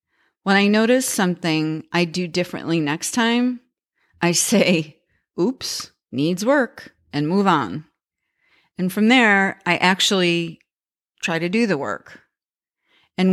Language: English